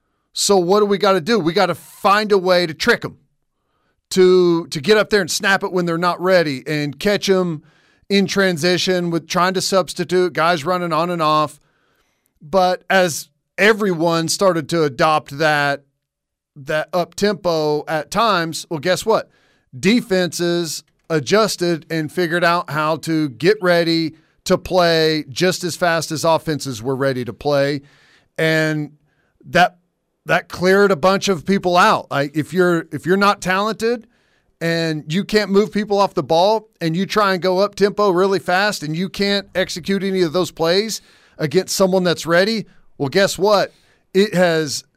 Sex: male